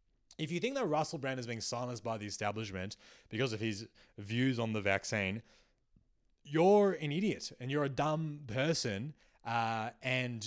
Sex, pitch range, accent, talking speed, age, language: male, 110-150 Hz, Australian, 165 wpm, 20-39, English